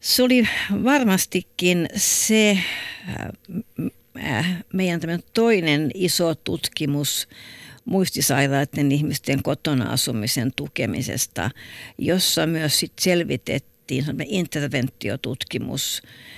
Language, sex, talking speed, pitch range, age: Finnish, female, 70 wpm, 120-160 Hz, 50-69